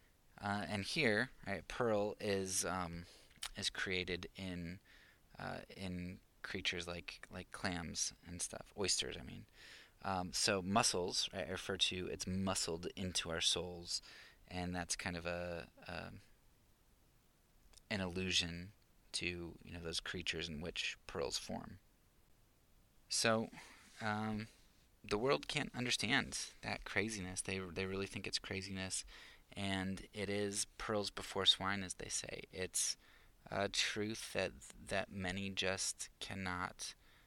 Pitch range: 90-100 Hz